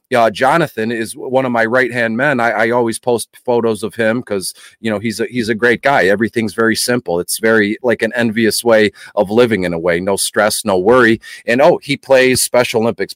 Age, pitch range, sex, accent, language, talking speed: 40-59, 115-135 Hz, male, American, English, 220 wpm